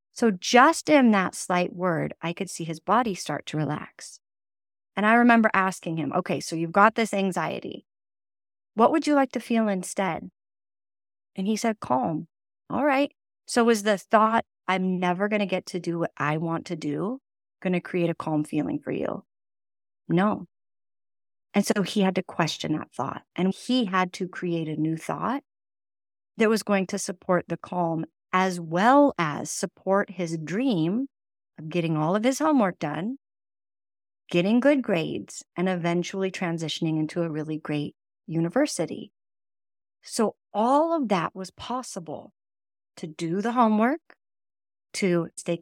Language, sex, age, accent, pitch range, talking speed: English, female, 30-49, American, 155-215 Hz, 160 wpm